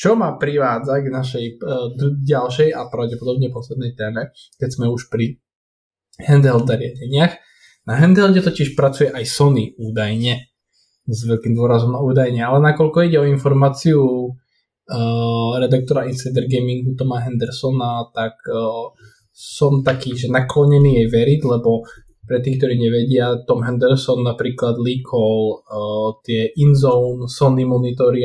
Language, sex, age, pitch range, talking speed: Slovak, male, 20-39, 115-140 Hz, 135 wpm